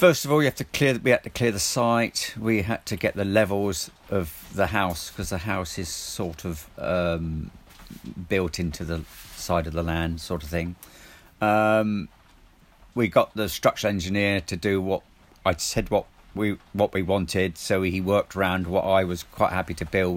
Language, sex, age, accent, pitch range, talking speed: English, male, 40-59, British, 85-100 Hz, 185 wpm